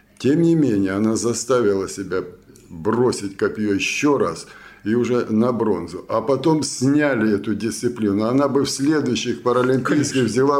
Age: 60-79